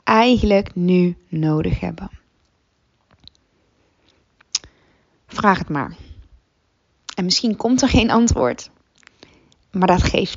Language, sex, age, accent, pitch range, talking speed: Dutch, female, 20-39, Dutch, 170-215 Hz, 95 wpm